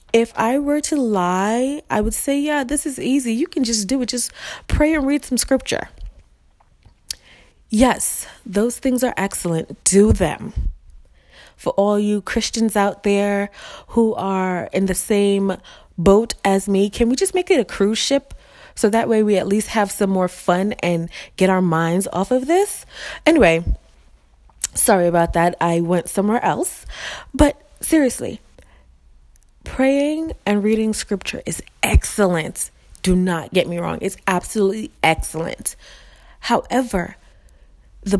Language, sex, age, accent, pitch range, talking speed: English, female, 20-39, American, 180-245 Hz, 150 wpm